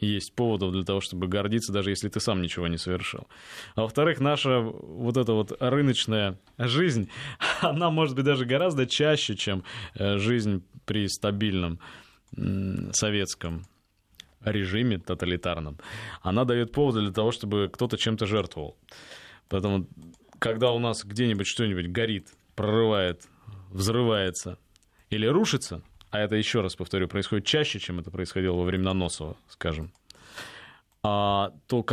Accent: native